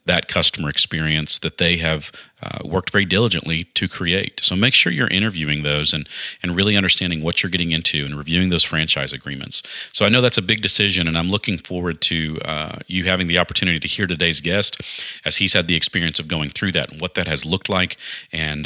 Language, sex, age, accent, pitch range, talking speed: English, male, 40-59, American, 85-110 Hz, 220 wpm